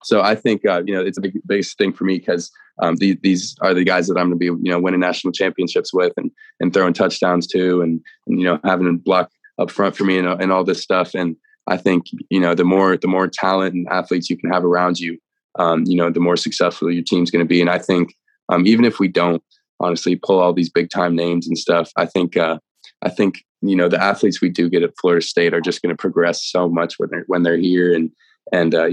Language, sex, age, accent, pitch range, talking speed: English, male, 20-39, American, 85-95 Hz, 255 wpm